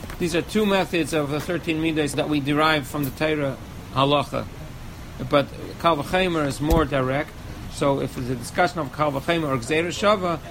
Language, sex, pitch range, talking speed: English, male, 140-170 Hz, 165 wpm